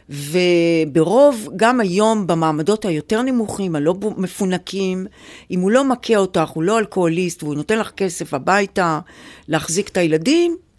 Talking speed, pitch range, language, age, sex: 135 wpm, 165-260 Hz, Hebrew, 50-69, female